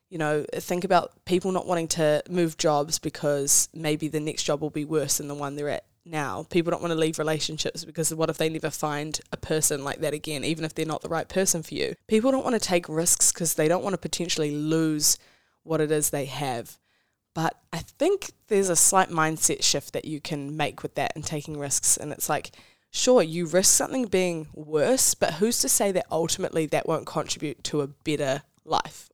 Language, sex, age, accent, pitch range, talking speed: English, female, 10-29, Australian, 150-170 Hz, 220 wpm